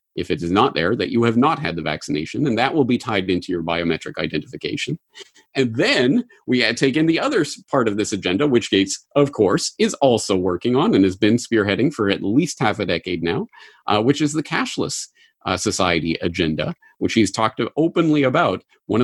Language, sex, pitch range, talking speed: English, male, 105-145 Hz, 205 wpm